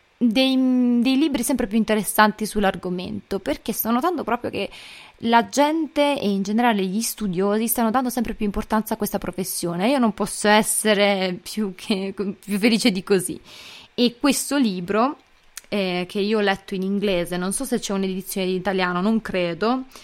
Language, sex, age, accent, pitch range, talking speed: Italian, female, 20-39, native, 190-235 Hz, 170 wpm